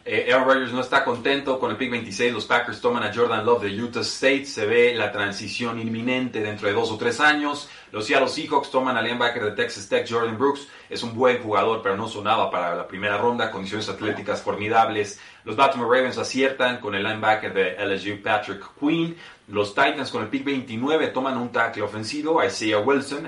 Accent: Mexican